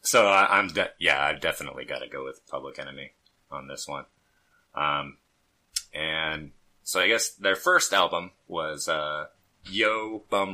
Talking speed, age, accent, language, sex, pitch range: 160 wpm, 30-49, American, English, male, 75-95 Hz